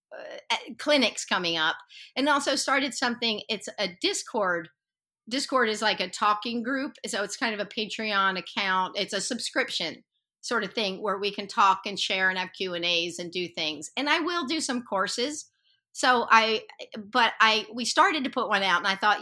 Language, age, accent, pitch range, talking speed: Dutch, 50-69, American, 170-230 Hz, 195 wpm